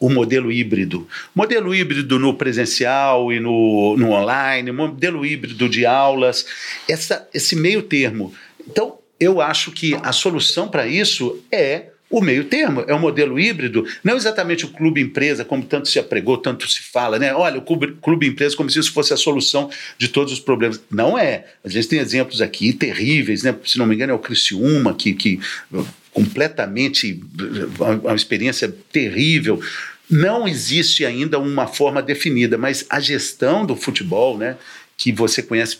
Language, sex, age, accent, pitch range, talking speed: Portuguese, male, 50-69, Brazilian, 125-185 Hz, 165 wpm